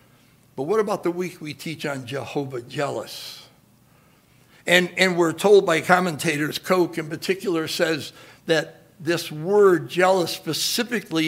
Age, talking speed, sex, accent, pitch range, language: 60-79, 135 wpm, male, American, 155-205 Hz, English